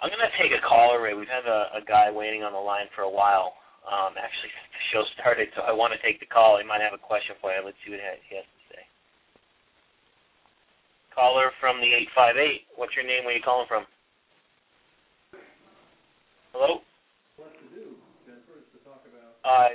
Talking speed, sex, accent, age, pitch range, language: 180 wpm, male, American, 30-49, 105-130 Hz, English